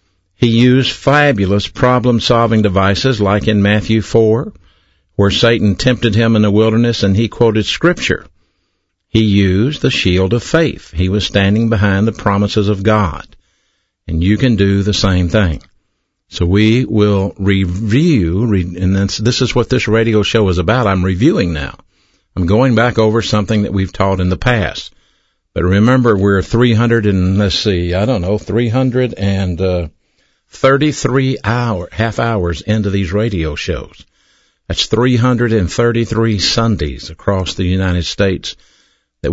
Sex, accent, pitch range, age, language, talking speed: male, American, 95-115 Hz, 60-79, English, 150 wpm